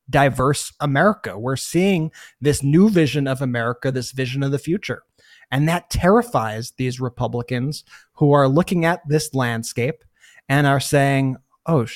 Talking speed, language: 145 wpm, English